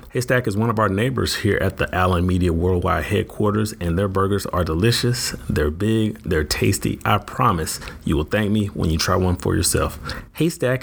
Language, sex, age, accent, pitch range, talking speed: English, male, 30-49, American, 90-110 Hz, 195 wpm